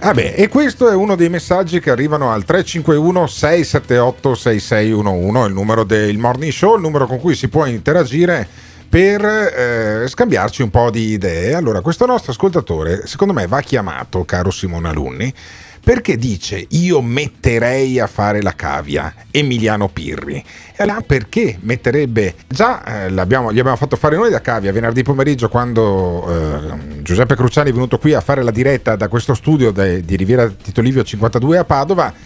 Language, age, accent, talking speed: Italian, 40-59, native, 165 wpm